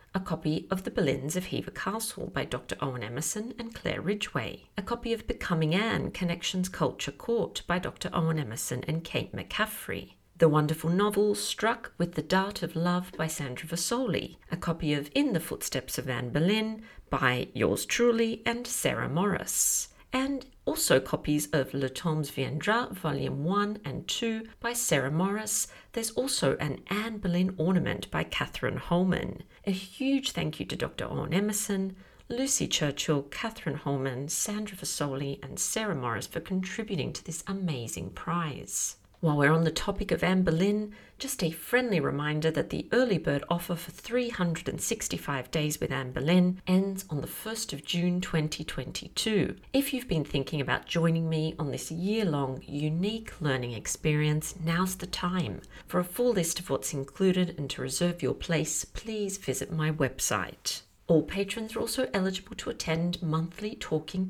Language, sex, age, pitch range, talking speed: English, female, 50-69, 150-205 Hz, 160 wpm